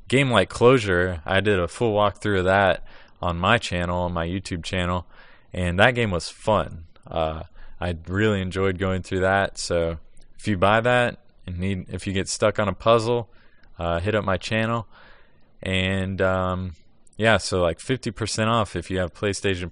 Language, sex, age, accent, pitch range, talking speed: English, male, 20-39, American, 90-115 Hz, 180 wpm